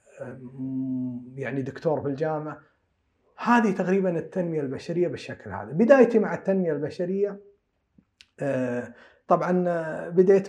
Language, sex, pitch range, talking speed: Arabic, male, 135-160 Hz, 90 wpm